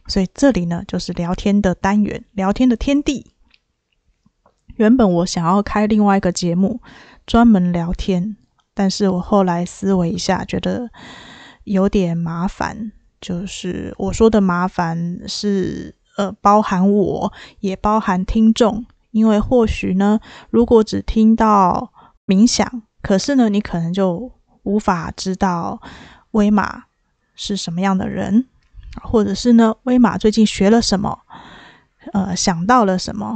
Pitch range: 185-220 Hz